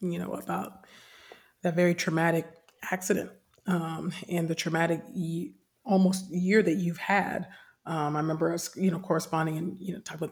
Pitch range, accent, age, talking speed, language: 165-185 Hz, American, 30-49, 170 wpm, English